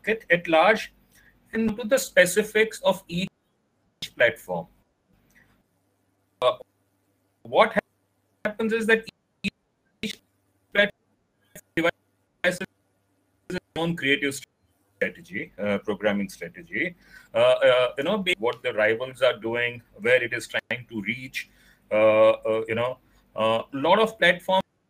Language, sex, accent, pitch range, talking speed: Hindi, male, native, 140-200 Hz, 115 wpm